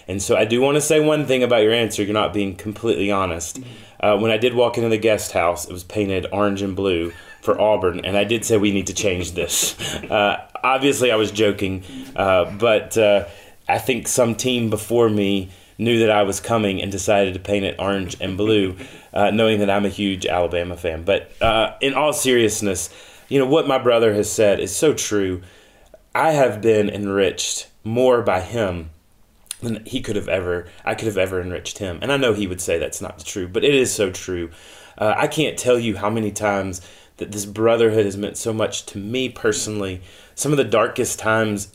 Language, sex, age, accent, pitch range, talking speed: English, male, 30-49, American, 100-115 Hz, 210 wpm